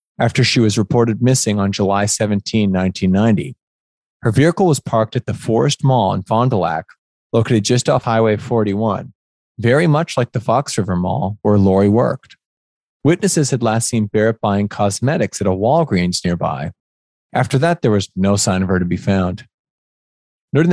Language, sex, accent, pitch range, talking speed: English, male, American, 100-130 Hz, 170 wpm